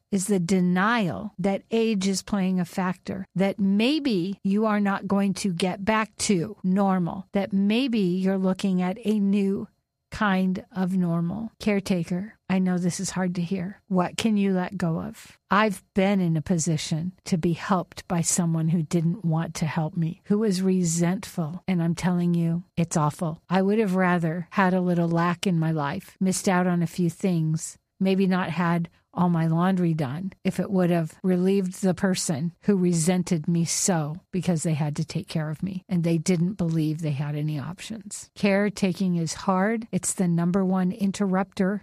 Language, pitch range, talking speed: English, 175-200 Hz, 185 wpm